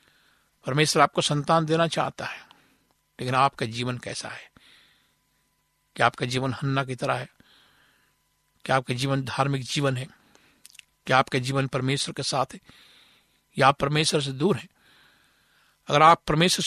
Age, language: 60-79, Hindi